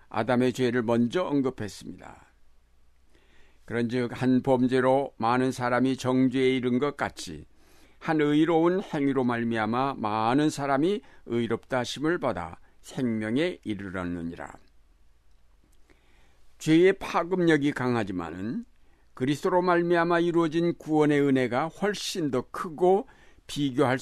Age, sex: 60-79, male